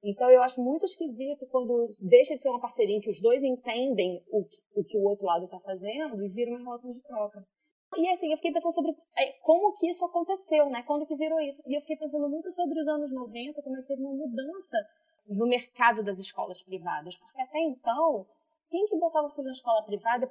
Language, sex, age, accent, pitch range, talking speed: Portuguese, female, 20-39, Brazilian, 210-295 Hz, 225 wpm